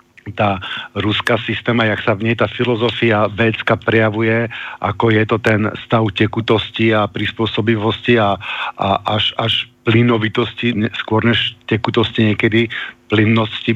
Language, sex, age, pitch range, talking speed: Slovak, male, 50-69, 105-115 Hz, 130 wpm